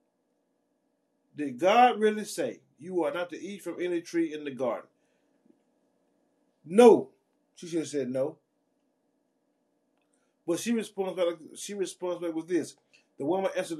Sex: male